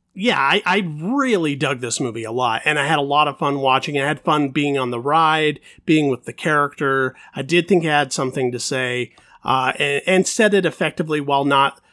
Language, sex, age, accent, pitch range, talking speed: English, male, 30-49, American, 140-195 Hz, 225 wpm